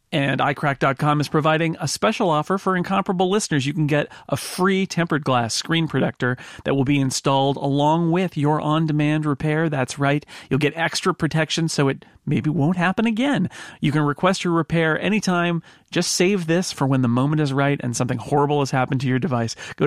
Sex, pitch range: male, 125-160 Hz